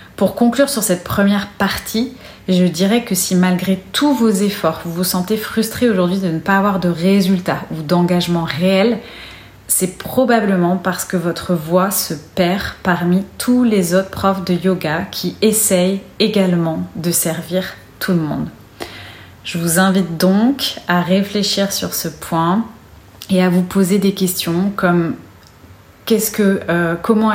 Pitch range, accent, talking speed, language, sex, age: 175-205 Hz, French, 155 wpm, French, female, 30-49